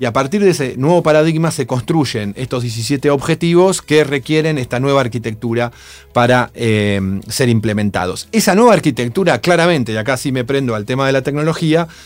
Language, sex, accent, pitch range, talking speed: Spanish, male, Argentinian, 115-160 Hz, 175 wpm